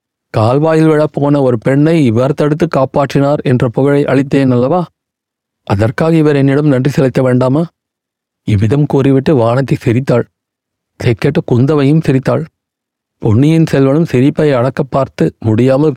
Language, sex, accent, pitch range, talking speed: Tamil, male, native, 125-150 Hz, 115 wpm